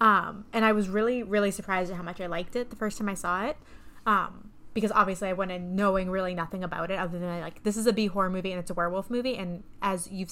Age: 20-39